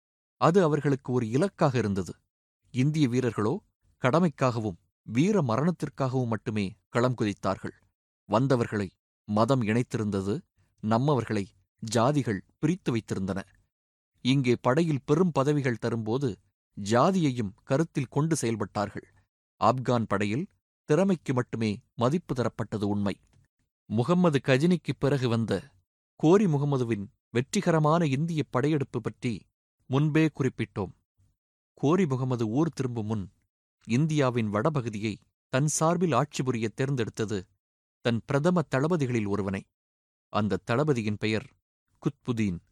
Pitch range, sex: 105-145 Hz, male